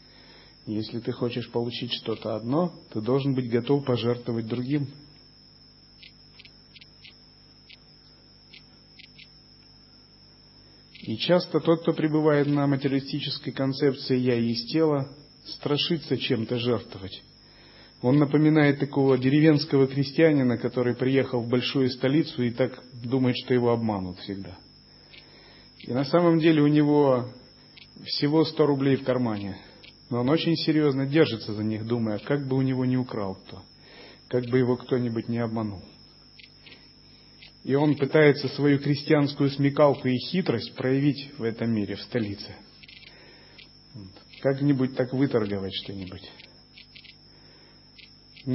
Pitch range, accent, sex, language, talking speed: 115-145 Hz, native, male, Russian, 115 wpm